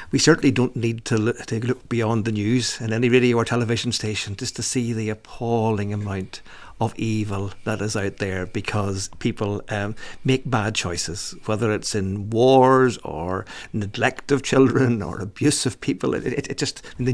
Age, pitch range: 50-69, 105-130 Hz